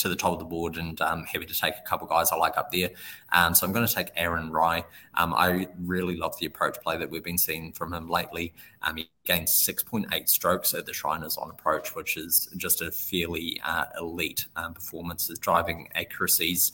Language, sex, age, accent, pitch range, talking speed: English, male, 20-39, Australian, 85-90 Hz, 220 wpm